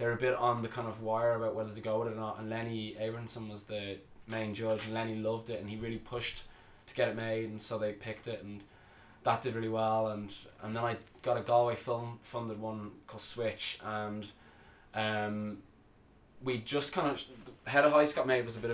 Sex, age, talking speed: male, 20-39, 225 wpm